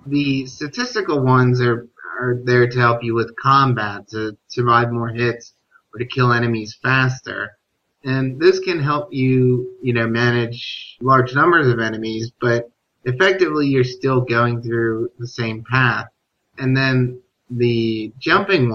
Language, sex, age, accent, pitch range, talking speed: English, male, 30-49, American, 115-130 Hz, 145 wpm